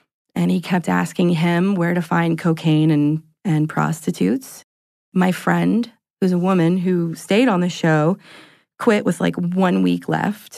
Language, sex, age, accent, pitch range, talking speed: English, female, 30-49, American, 165-210 Hz, 160 wpm